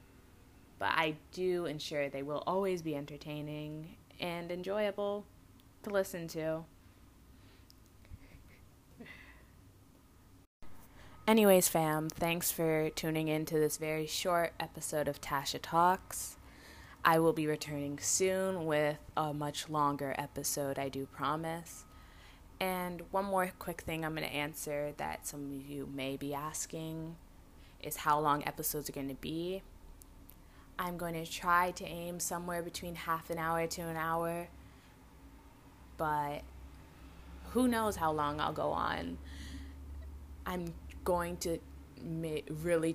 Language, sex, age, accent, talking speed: English, female, 20-39, American, 125 wpm